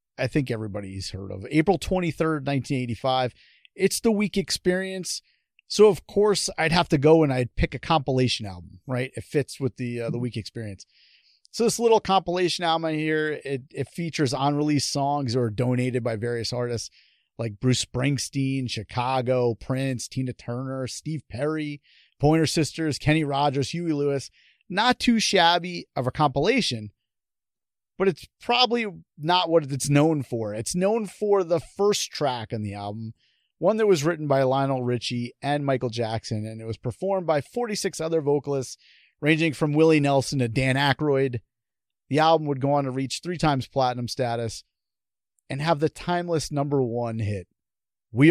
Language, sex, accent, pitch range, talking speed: English, male, American, 120-160 Hz, 165 wpm